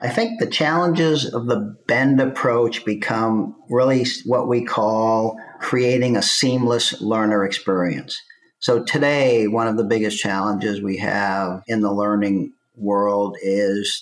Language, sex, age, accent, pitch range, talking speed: English, male, 50-69, American, 100-115 Hz, 135 wpm